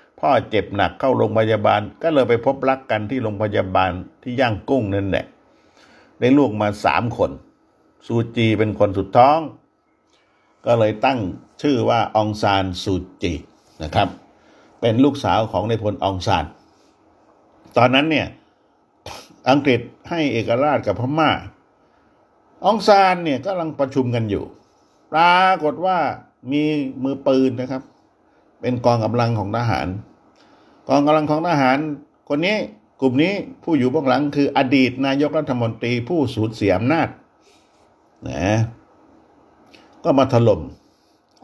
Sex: male